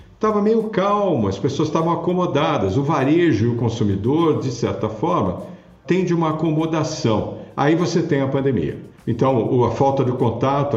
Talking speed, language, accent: 160 wpm, Portuguese, Brazilian